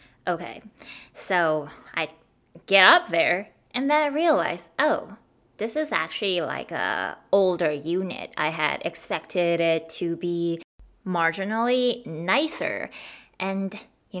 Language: English